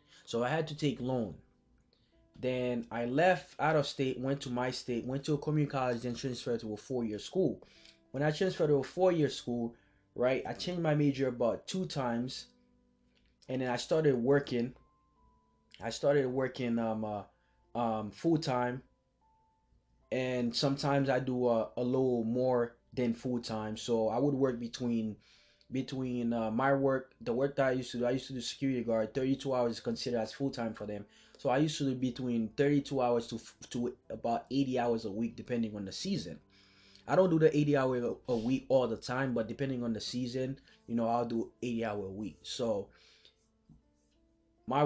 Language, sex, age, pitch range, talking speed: English, male, 20-39, 110-135 Hz, 185 wpm